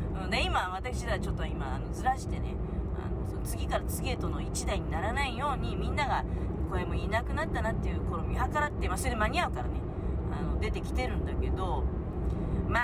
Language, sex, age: Japanese, female, 30-49